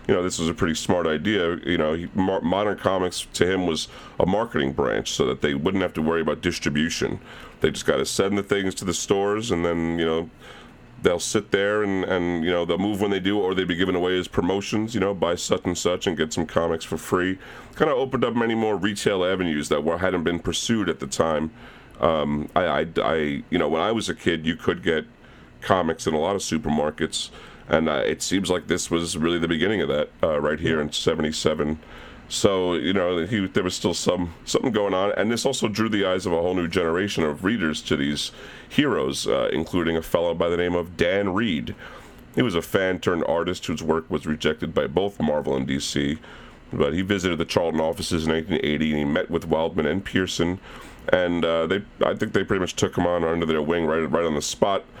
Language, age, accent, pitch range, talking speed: English, 40-59, American, 80-95 Hz, 230 wpm